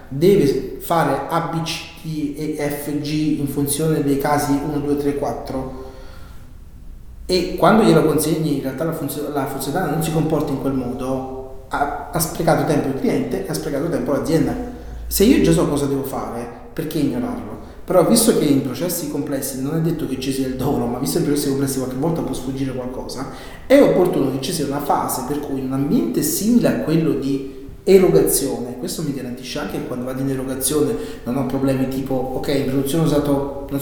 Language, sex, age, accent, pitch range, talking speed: Italian, male, 30-49, native, 135-160 Hz, 195 wpm